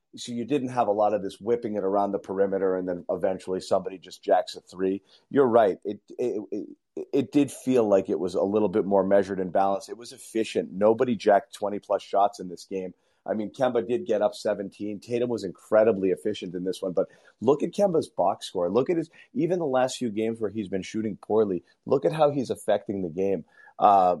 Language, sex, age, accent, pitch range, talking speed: English, male, 30-49, American, 95-125 Hz, 225 wpm